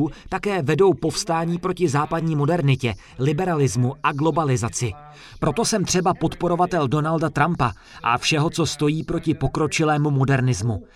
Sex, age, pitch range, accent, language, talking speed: male, 30-49, 135-165 Hz, native, Czech, 120 wpm